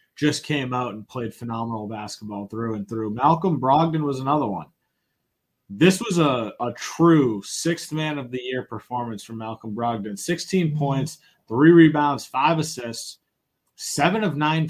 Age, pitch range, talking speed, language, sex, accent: 30-49, 125-155 Hz, 155 wpm, English, male, American